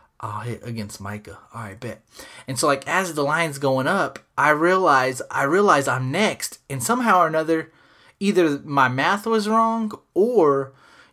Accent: American